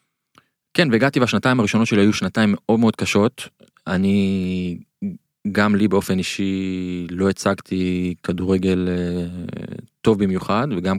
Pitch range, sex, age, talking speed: 95-110 Hz, male, 20-39, 115 wpm